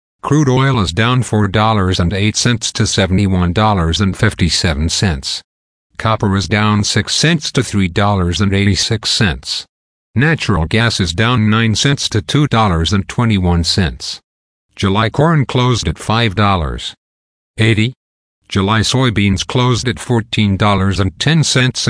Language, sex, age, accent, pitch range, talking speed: English, male, 50-69, American, 95-120 Hz, 80 wpm